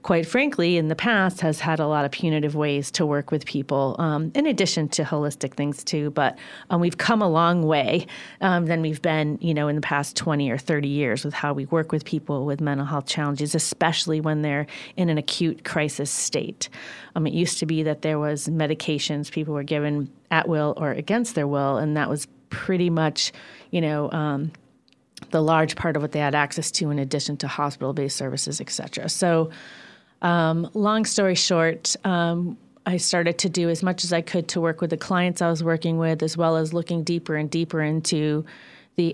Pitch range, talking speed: 150-170 Hz, 205 wpm